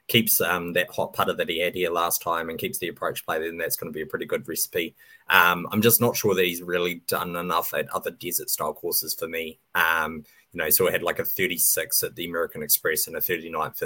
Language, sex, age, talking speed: English, male, 20-39, 245 wpm